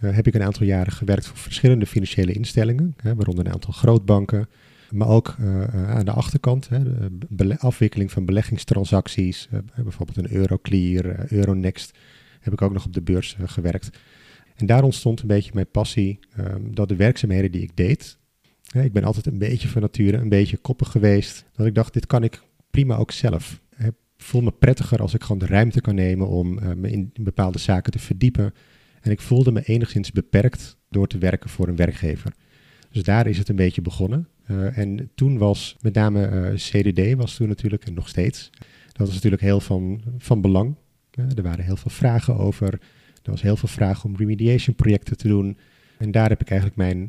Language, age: Dutch, 40-59